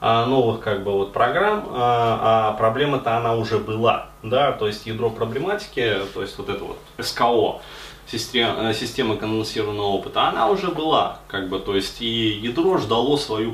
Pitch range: 110-140 Hz